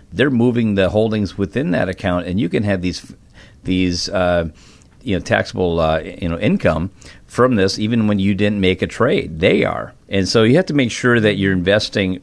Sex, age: male, 50-69